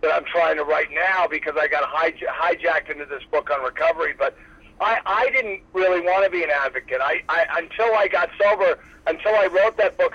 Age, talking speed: 50-69, 220 wpm